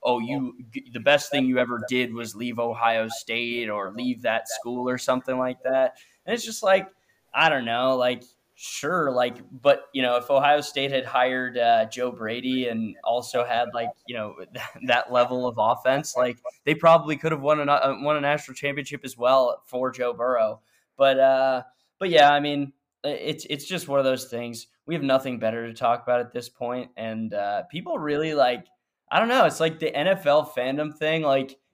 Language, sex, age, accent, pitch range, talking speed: English, male, 10-29, American, 115-140 Hz, 200 wpm